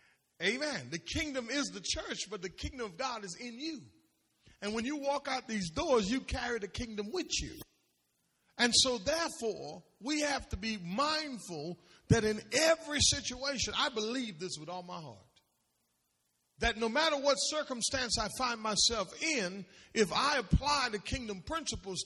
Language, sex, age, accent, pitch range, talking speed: English, male, 40-59, American, 190-280 Hz, 165 wpm